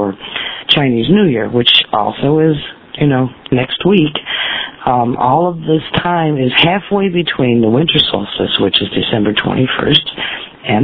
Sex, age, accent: female, 50-69, American